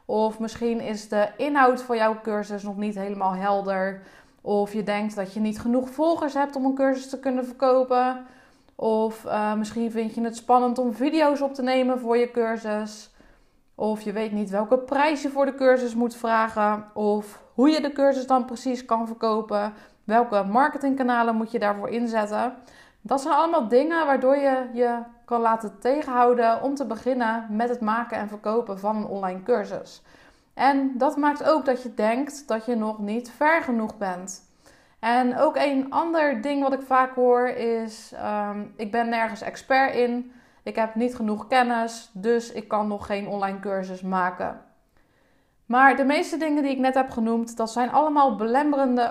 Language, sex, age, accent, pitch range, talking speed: Dutch, female, 20-39, Dutch, 215-260 Hz, 180 wpm